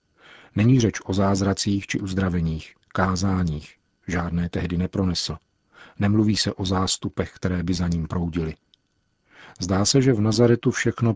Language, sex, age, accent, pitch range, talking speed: Czech, male, 40-59, native, 90-105 Hz, 135 wpm